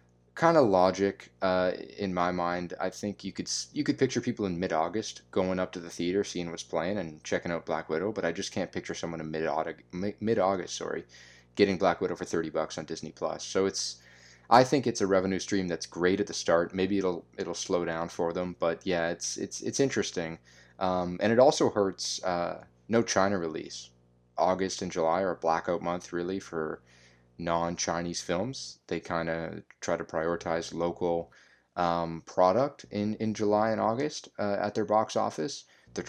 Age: 20-39